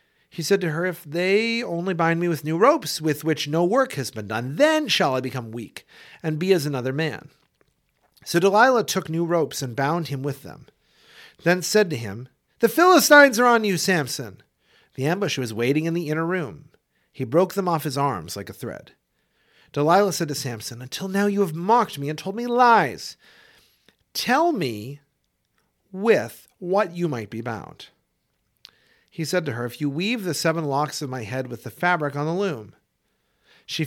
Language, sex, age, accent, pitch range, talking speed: English, male, 50-69, American, 140-195 Hz, 190 wpm